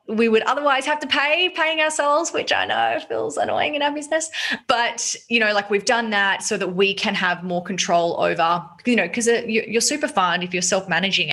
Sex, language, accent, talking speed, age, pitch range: female, English, Australian, 210 wpm, 20-39, 175-215 Hz